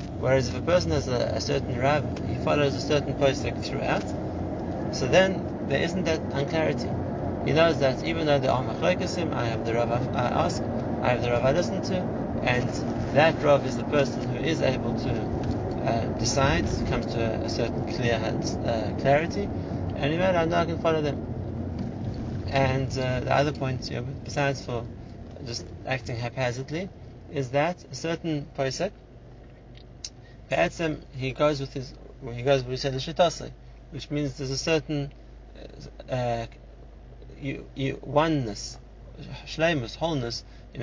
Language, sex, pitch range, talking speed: English, male, 120-145 Hz, 155 wpm